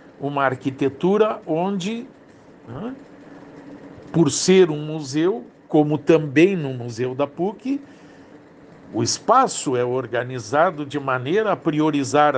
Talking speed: 105 wpm